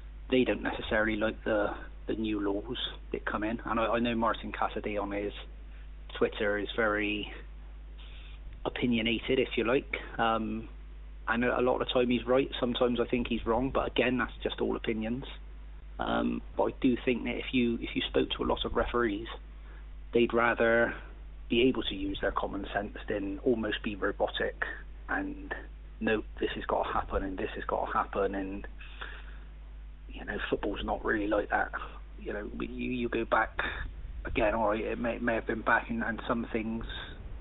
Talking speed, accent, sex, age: 185 wpm, British, male, 30-49